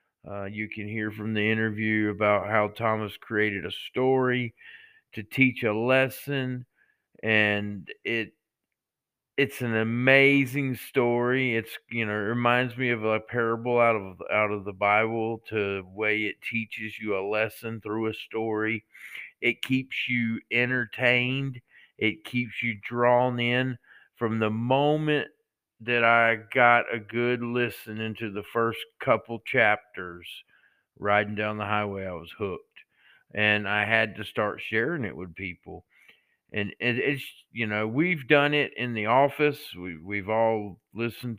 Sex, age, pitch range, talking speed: male, 50-69, 105-125 Hz, 150 wpm